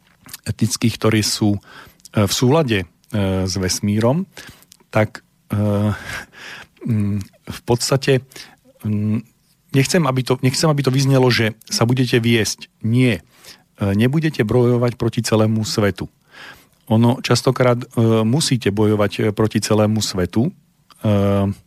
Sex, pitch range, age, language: male, 105-125 Hz, 40-59, Slovak